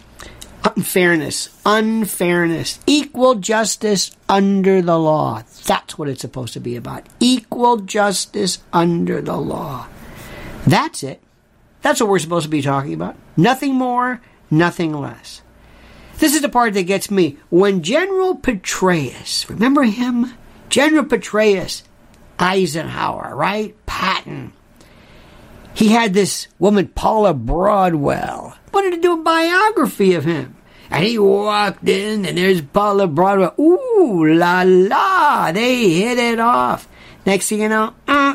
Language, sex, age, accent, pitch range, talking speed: English, male, 50-69, American, 165-235 Hz, 130 wpm